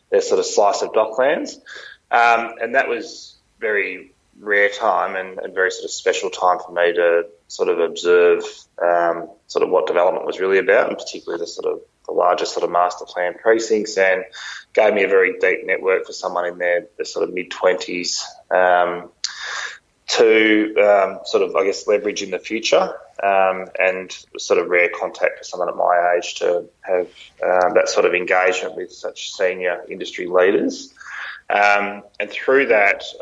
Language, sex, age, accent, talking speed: English, male, 20-39, Australian, 175 wpm